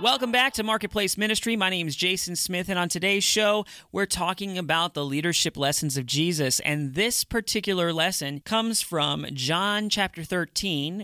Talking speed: 170 wpm